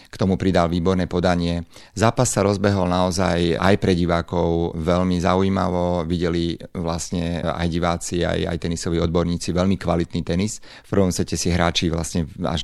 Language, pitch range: Slovak, 85-95 Hz